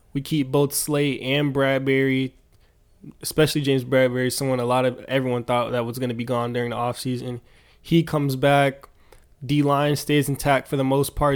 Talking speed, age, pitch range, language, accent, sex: 180 wpm, 20-39, 125-140 Hz, English, American, male